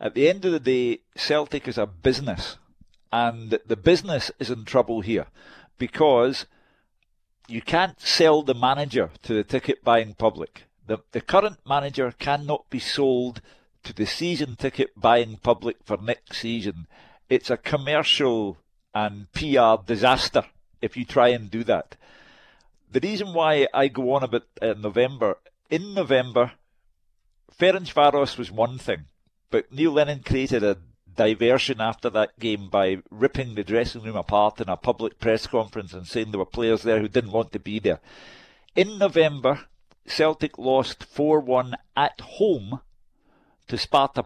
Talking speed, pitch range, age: 150 wpm, 110-150 Hz, 50-69